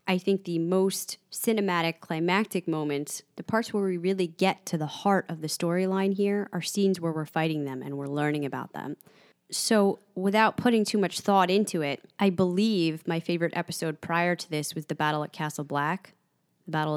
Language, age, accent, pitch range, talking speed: English, 20-39, American, 155-195 Hz, 195 wpm